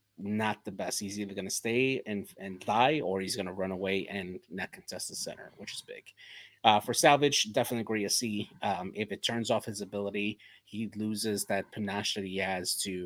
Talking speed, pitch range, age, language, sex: 200 wpm, 95-110 Hz, 30-49, English, male